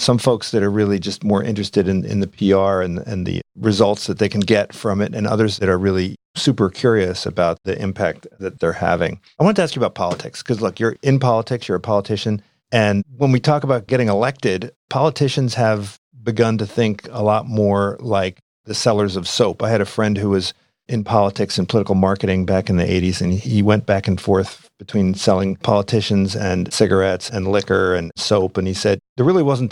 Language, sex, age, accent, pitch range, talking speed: English, male, 50-69, American, 95-125 Hz, 215 wpm